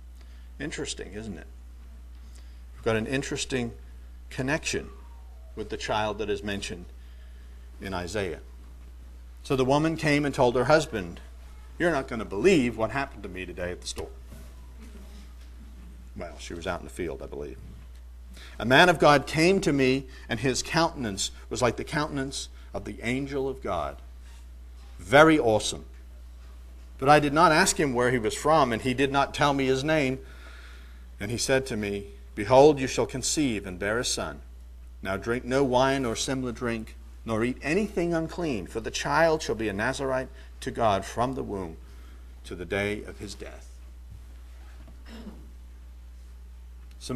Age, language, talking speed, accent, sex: 50-69, English, 165 wpm, American, male